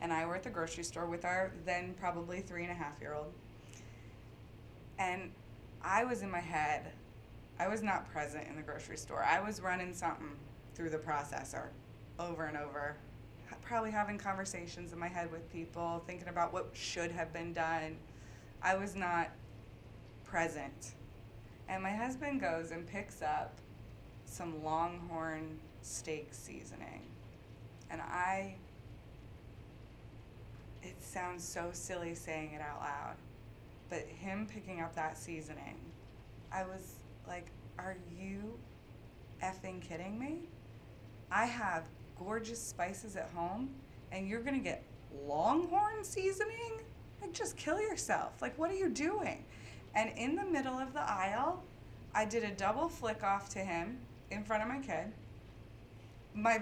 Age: 20-39